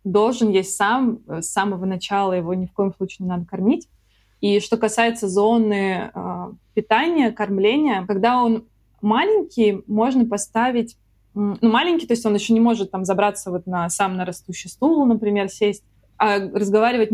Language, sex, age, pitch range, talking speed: Russian, female, 20-39, 190-230 Hz, 160 wpm